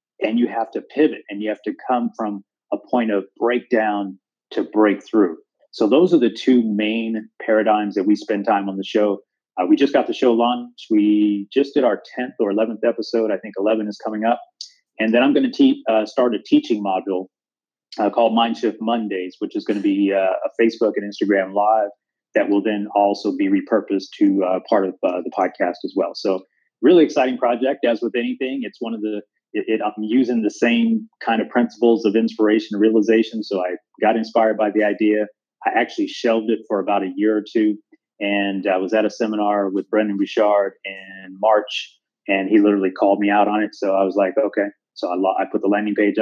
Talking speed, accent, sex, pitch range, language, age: 210 wpm, American, male, 100-115 Hz, English, 30-49